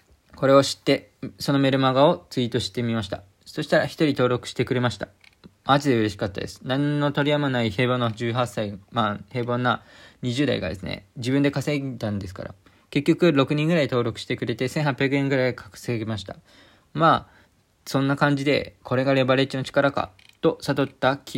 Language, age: Japanese, 20-39